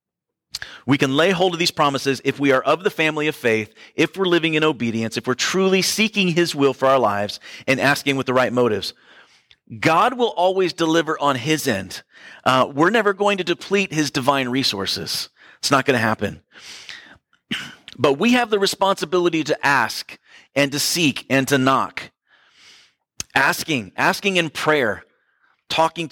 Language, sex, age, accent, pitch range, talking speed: English, male, 40-59, American, 135-170 Hz, 170 wpm